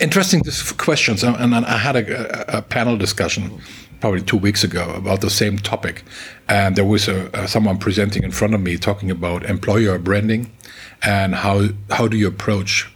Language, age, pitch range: English, 50-69, 95-115 Hz